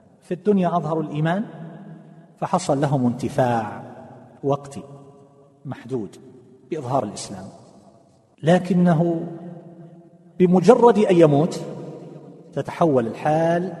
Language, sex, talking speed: Arabic, male, 75 wpm